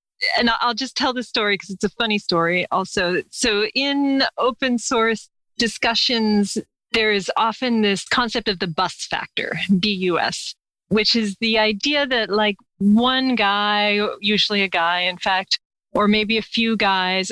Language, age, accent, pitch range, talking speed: English, 40-59, American, 190-225 Hz, 155 wpm